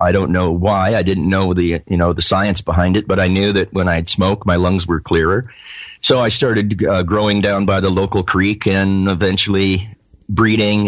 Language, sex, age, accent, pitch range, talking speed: English, male, 40-59, American, 90-100 Hz, 210 wpm